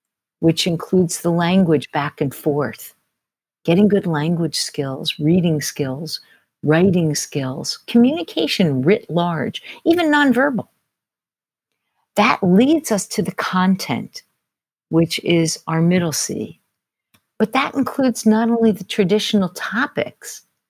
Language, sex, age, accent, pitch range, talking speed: English, female, 50-69, American, 155-210 Hz, 115 wpm